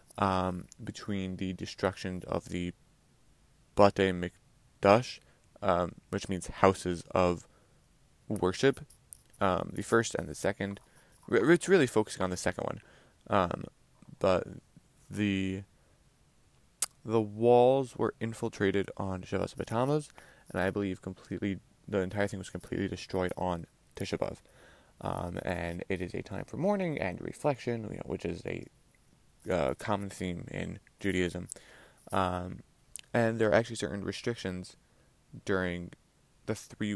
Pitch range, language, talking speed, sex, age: 95-120 Hz, English, 130 wpm, male, 20-39